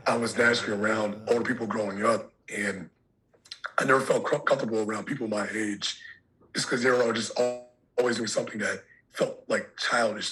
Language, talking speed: English, 175 wpm